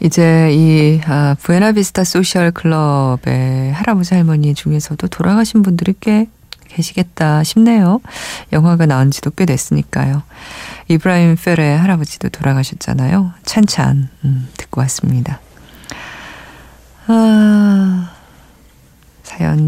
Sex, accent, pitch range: female, native, 135-190 Hz